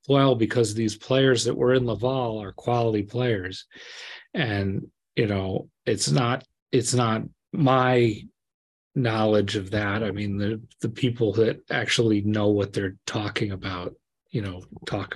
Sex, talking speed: male, 145 wpm